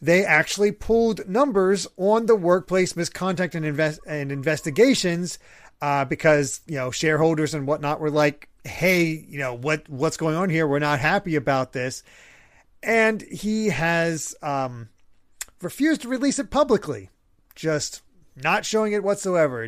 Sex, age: male, 30-49